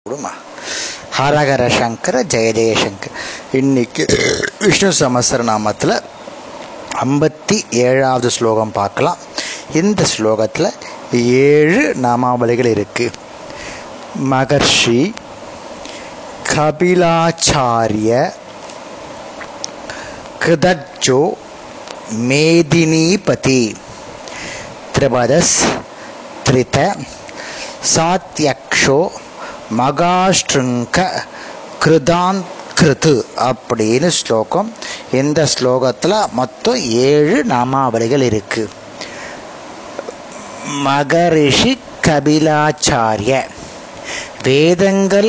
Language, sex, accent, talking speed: Tamil, male, native, 40 wpm